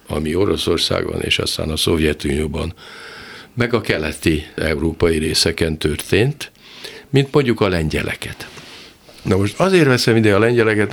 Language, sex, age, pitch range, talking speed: Hungarian, male, 60-79, 80-110 Hz, 125 wpm